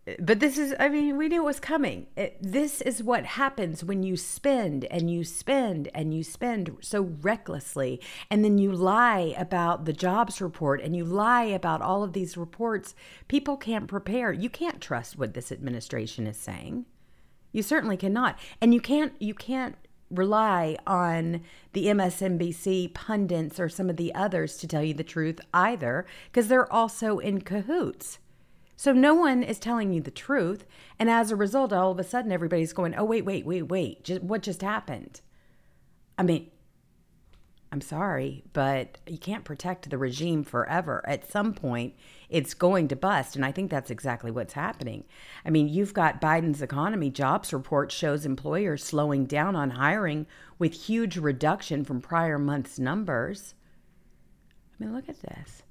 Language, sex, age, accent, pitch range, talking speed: English, female, 50-69, American, 155-220 Hz, 170 wpm